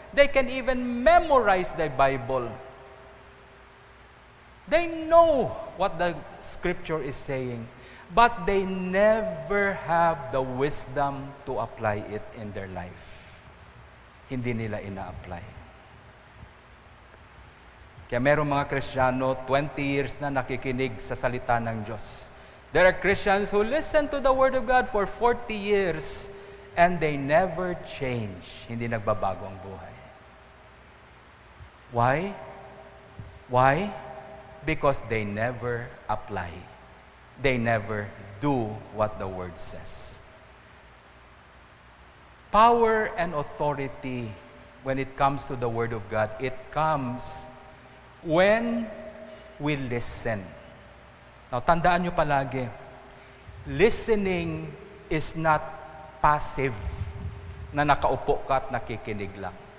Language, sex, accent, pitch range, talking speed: English, male, Filipino, 110-170 Hz, 105 wpm